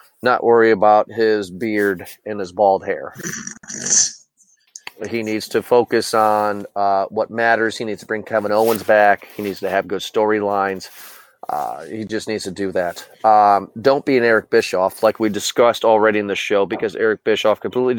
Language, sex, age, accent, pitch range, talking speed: English, male, 30-49, American, 105-130 Hz, 175 wpm